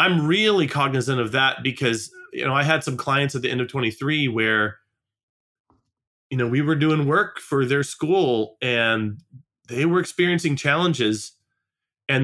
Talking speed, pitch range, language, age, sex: 160 wpm, 120-155 Hz, English, 30-49, male